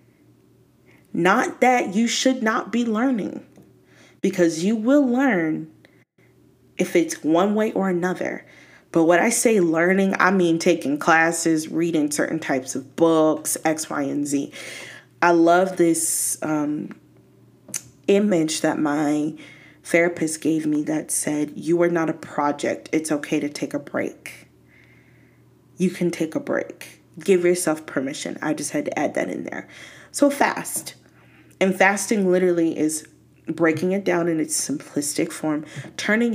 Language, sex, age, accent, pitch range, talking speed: English, female, 20-39, American, 150-190 Hz, 145 wpm